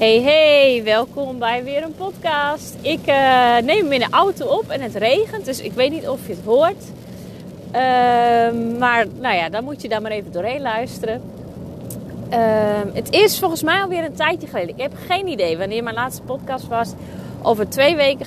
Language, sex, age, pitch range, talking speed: Dutch, female, 30-49, 215-285 Hz, 195 wpm